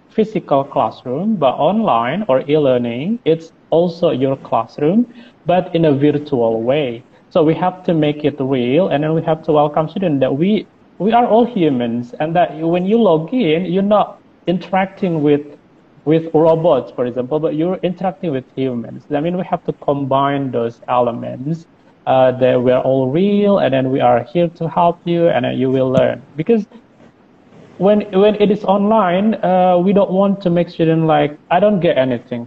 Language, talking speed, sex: English, 185 wpm, male